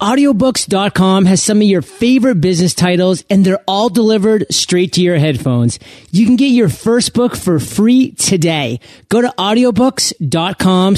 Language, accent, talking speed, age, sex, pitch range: English, American, 155 wpm, 30-49, male, 150-205 Hz